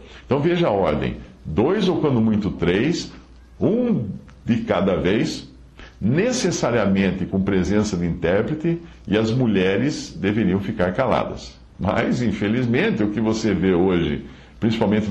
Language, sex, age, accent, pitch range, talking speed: Portuguese, male, 60-79, Brazilian, 85-125 Hz, 125 wpm